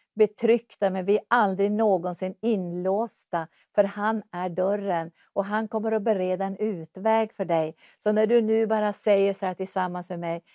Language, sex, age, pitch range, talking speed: English, female, 60-79, 180-210 Hz, 175 wpm